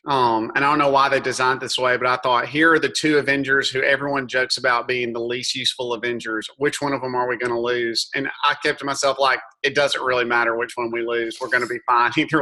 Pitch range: 125-150 Hz